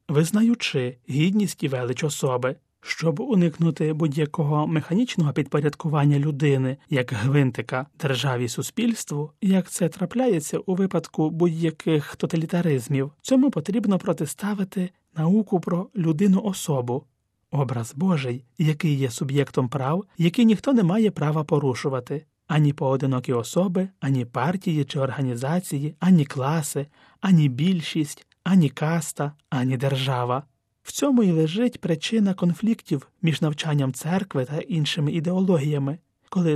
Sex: male